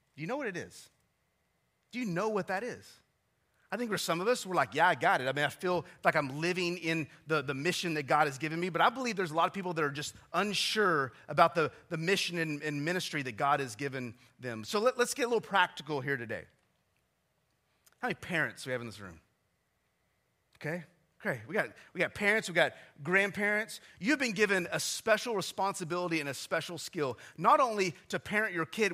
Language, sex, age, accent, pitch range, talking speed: English, male, 30-49, American, 155-220 Hz, 220 wpm